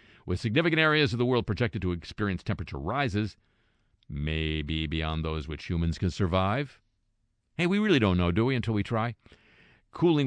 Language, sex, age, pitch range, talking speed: English, male, 50-69, 85-115 Hz, 170 wpm